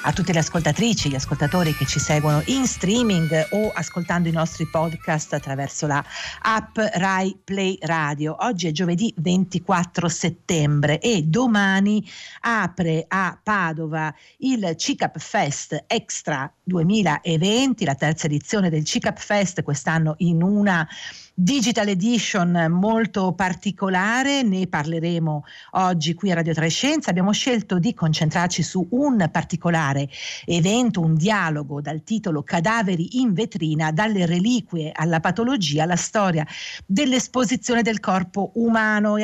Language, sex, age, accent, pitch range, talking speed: Italian, female, 50-69, native, 160-215 Hz, 130 wpm